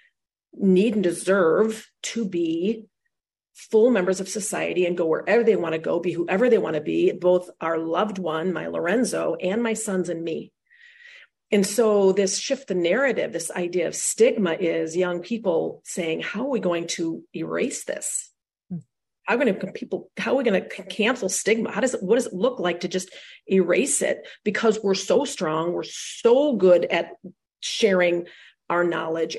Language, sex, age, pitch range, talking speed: English, female, 40-59, 175-220 Hz, 185 wpm